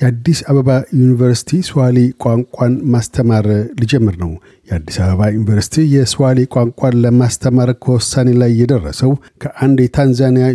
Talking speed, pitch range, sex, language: 110 wpm, 115-135 Hz, male, Amharic